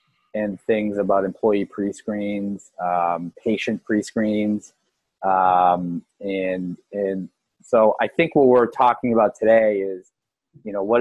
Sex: male